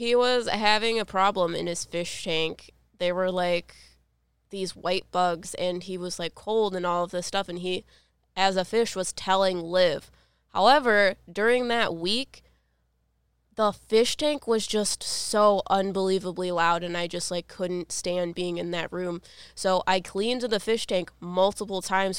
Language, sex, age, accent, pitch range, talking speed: English, female, 20-39, American, 180-210 Hz, 170 wpm